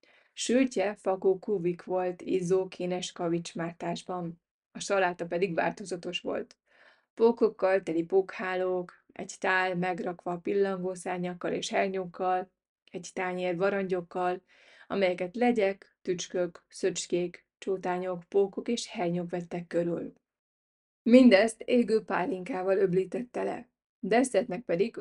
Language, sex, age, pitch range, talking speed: Hungarian, female, 20-39, 180-200 Hz, 100 wpm